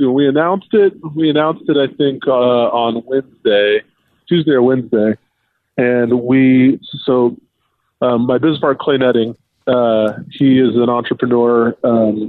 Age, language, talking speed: 20-39, English, 140 wpm